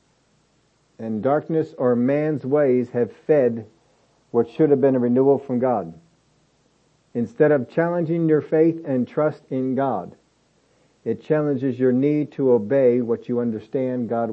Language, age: English, 50-69